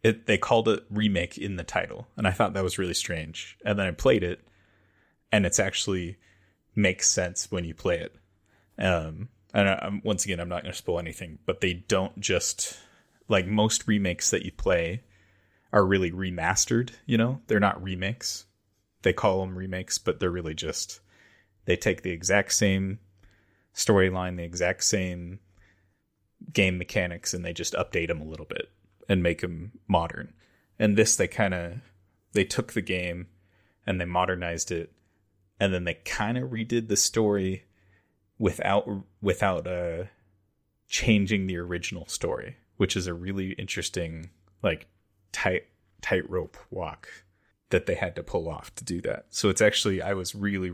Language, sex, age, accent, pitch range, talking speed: English, male, 30-49, American, 90-105 Hz, 170 wpm